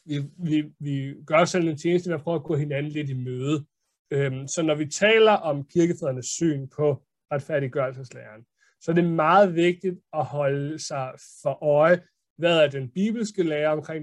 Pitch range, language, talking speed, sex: 135-170 Hz, Danish, 175 wpm, male